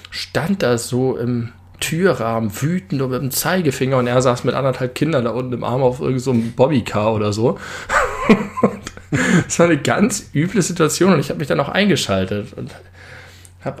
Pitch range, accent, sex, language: 105-135 Hz, German, male, German